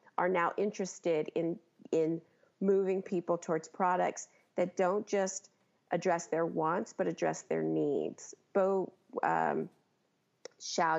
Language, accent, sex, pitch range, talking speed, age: English, American, female, 170-200 Hz, 115 wpm, 40-59